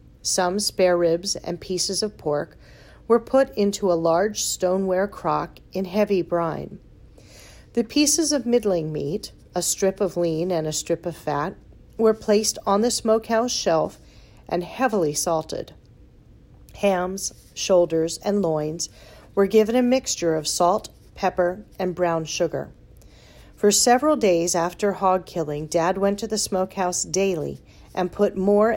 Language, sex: English, female